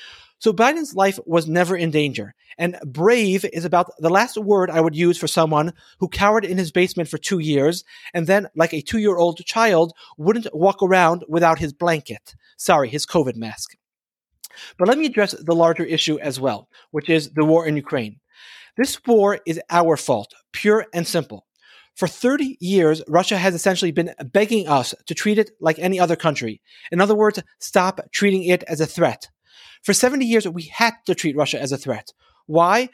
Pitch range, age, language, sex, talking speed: 160-200 Hz, 30-49, English, male, 190 wpm